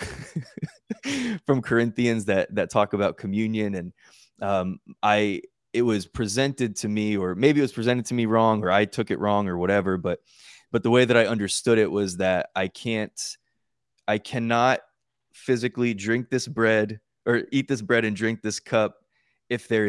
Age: 20-39